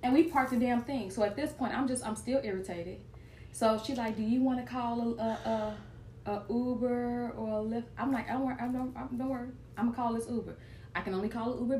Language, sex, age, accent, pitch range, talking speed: English, female, 20-39, American, 170-230 Hz, 275 wpm